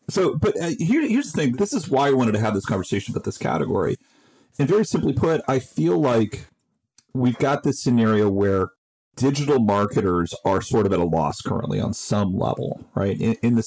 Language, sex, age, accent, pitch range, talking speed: English, male, 40-59, American, 100-135 Hz, 200 wpm